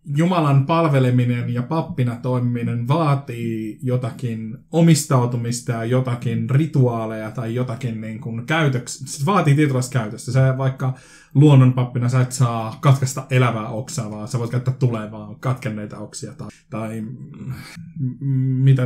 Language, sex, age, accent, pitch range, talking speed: Finnish, male, 20-39, native, 125-140 Hz, 125 wpm